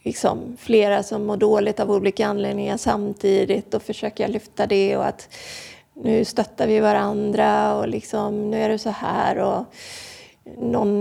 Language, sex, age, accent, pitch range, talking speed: Swedish, female, 30-49, native, 200-230 Hz, 155 wpm